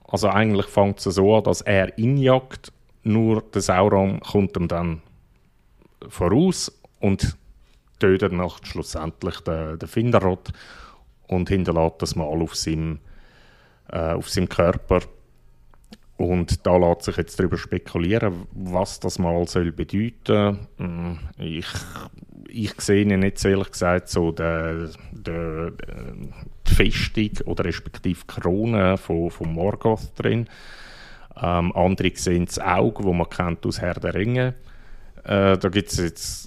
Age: 30-49